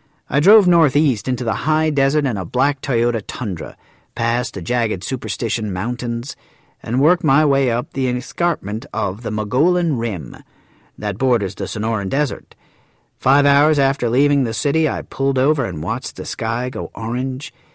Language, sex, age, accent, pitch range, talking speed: English, male, 50-69, American, 110-140 Hz, 160 wpm